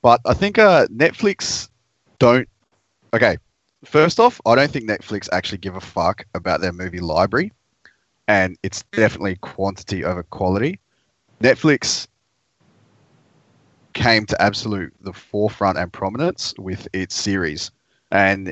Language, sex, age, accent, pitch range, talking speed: English, male, 30-49, Australian, 95-115 Hz, 125 wpm